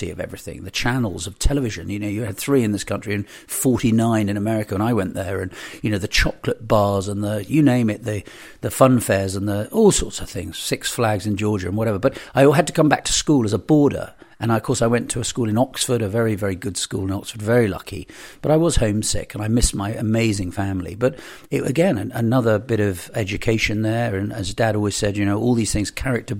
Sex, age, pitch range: male, 50-69, 100-120 Hz